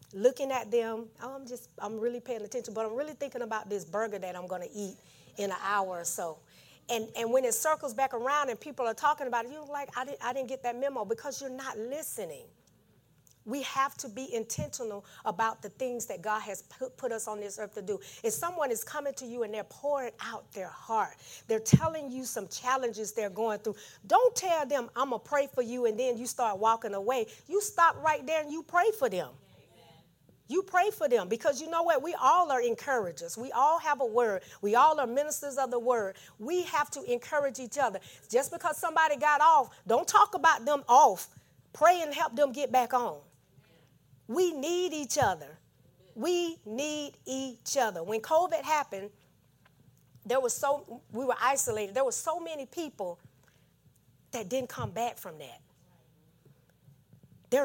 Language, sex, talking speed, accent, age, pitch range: English, female, 200 wpm, American, 40-59, 215-295 Hz